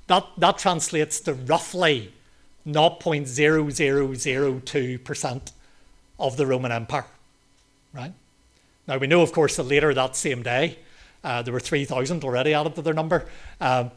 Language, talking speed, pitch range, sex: English, 135 wpm, 125-160 Hz, male